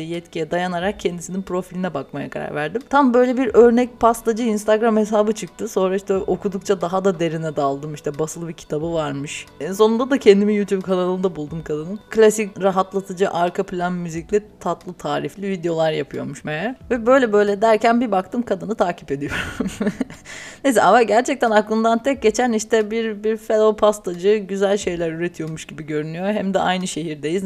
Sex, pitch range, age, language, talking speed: female, 180-215 Hz, 30-49, Turkish, 160 wpm